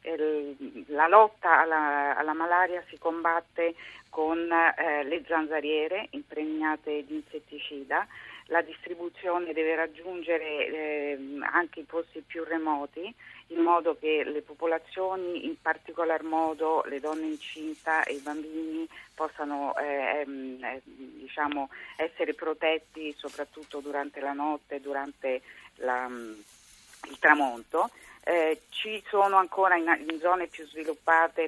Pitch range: 150-170 Hz